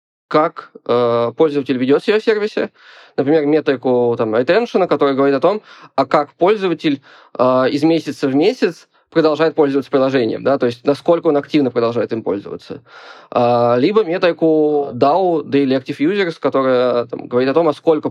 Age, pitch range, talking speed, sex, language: 20-39, 135-165 Hz, 155 wpm, male, Russian